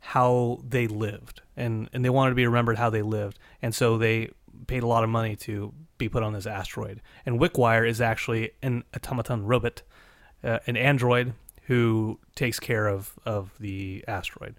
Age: 30-49